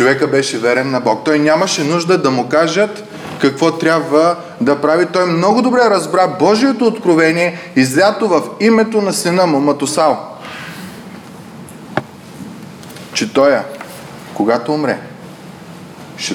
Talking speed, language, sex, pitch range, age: 120 wpm, Bulgarian, male, 150-200 Hz, 20-39